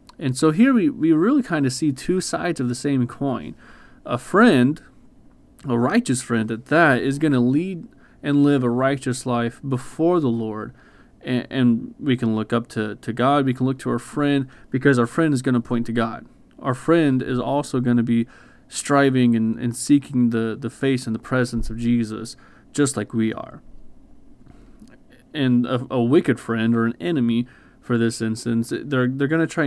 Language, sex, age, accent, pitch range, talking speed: English, male, 30-49, American, 115-140 Hz, 195 wpm